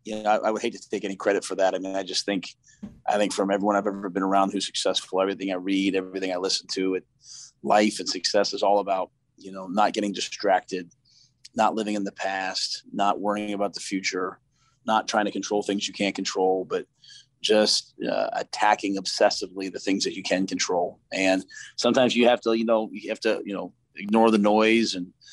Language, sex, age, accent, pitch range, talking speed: English, male, 30-49, American, 95-110 Hz, 215 wpm